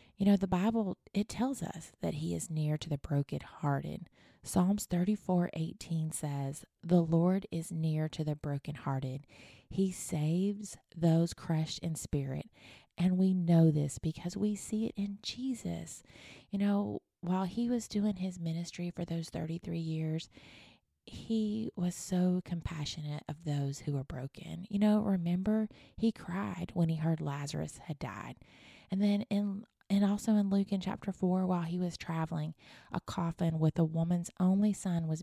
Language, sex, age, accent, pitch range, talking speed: English, female, 30-49, American, 155-195 Hz, 160 wpm